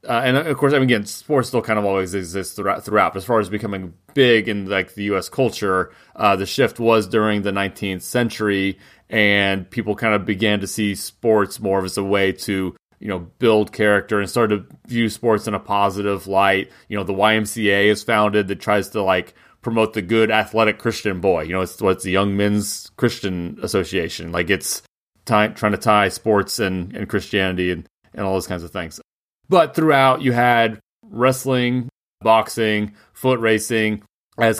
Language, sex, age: English, male, 30-49